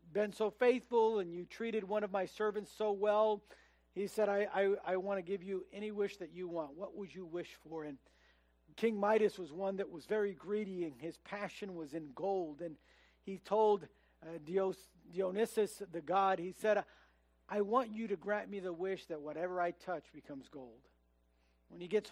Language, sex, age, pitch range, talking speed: English, male, 50-69, 165-200 Hz, 195 wpm